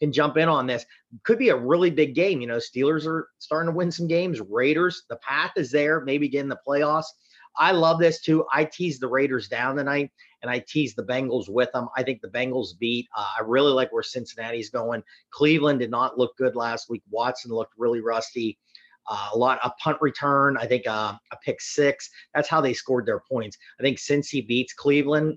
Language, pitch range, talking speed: English, 120-160 Hz, 220 wpm